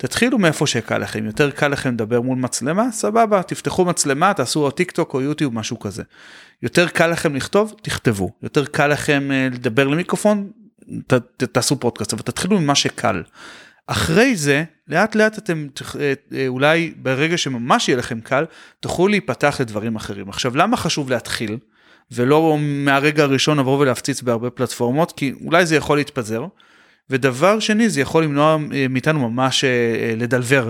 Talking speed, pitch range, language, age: 150 wpm, 120-155 Hz, Hebrew, 30-49